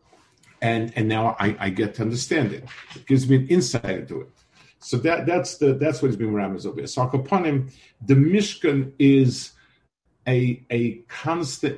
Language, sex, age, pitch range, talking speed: English, male, 50-69, 105-135 Hz, 175 wpm